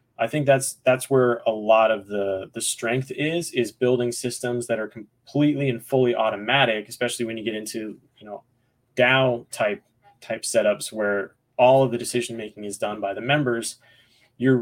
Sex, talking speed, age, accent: male, 180 wpm, 20-39, American